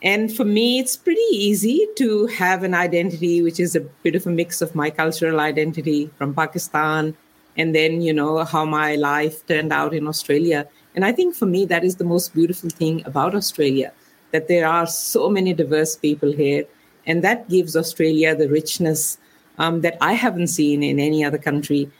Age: 50-69